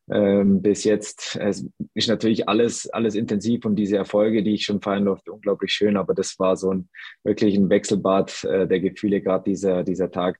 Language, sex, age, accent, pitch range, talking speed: German, male, 20-39, German, 90-105 Hz, 195 wpm